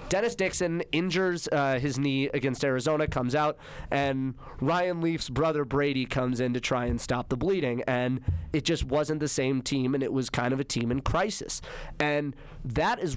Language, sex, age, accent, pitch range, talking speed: English, male, 30-49, American, 130-160 Hz, 190 wpm